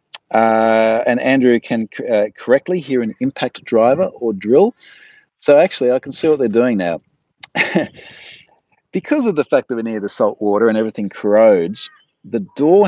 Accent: Australian